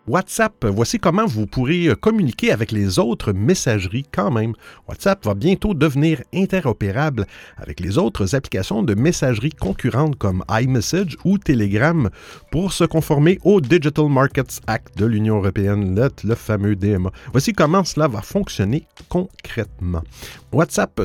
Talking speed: 140 wpm